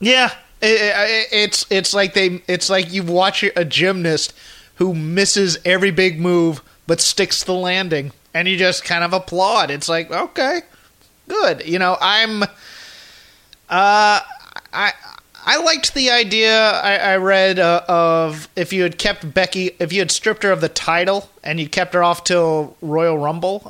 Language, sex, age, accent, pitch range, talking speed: English, male, 30-49, American, 160-200 Hz, 165 wpm